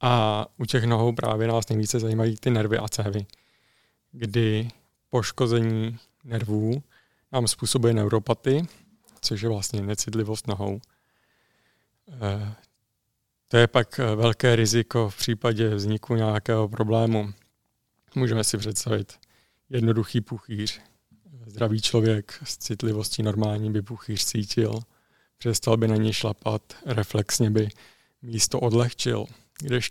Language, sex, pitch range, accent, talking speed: Czech, male, 110-120 Hz, native, 110 wpm